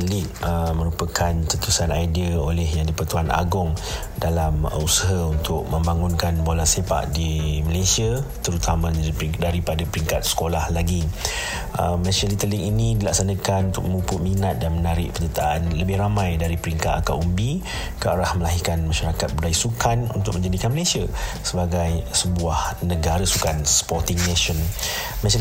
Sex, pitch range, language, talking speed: male, 85-95 Hz, Malay, 130 wpm